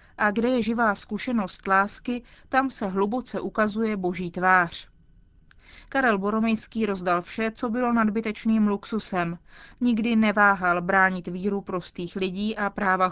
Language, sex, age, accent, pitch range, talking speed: Czech, female, 30-49, native, 185-220 Hz, 130 wpm